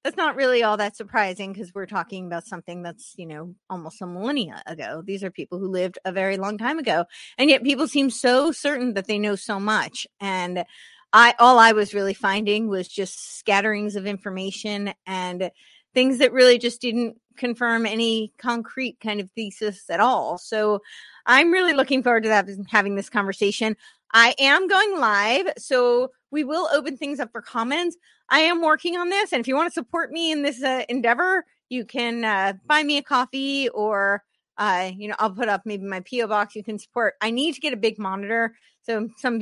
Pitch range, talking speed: 200-260 Hz, 200 wpm